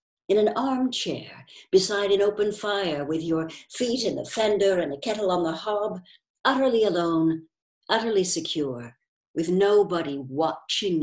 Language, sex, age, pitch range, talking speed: English, female, 60-79, 170-230 Hz, 140 wpm